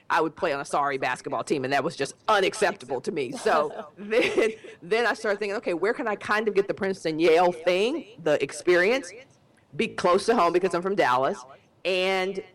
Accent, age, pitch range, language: American, 40-59, 150-200 Hz, English